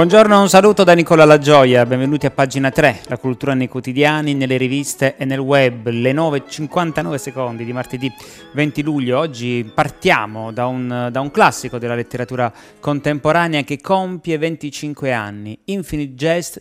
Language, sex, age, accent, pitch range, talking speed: Italian, male, 30-49, native, 120-150 Hz, 150 wpm